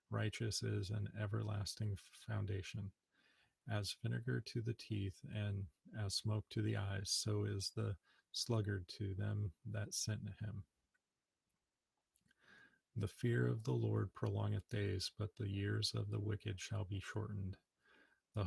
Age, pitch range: 40-59, 100-110 Hz